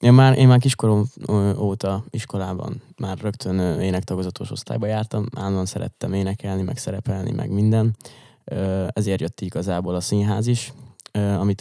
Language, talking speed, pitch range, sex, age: Hungarian, 135 wpm, 95-115 Hz, male, 20-39